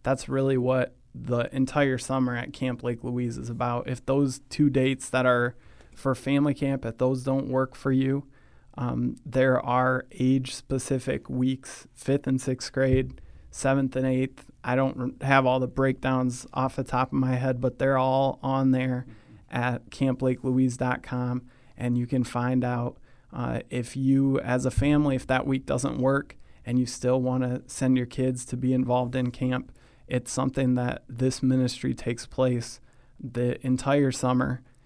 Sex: male